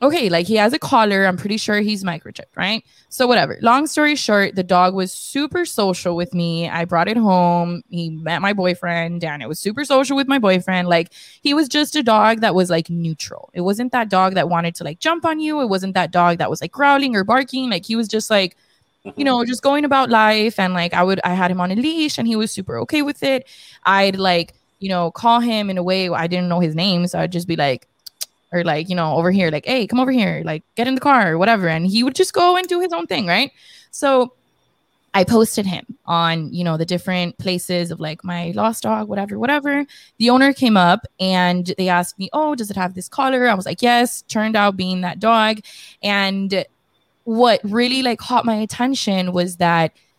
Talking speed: 235 wpm